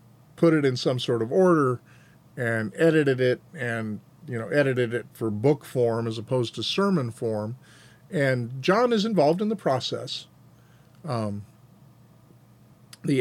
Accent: American